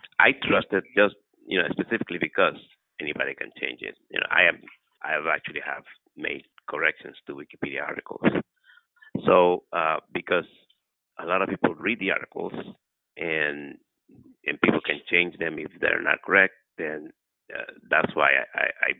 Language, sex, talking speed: English, male, 160 wpm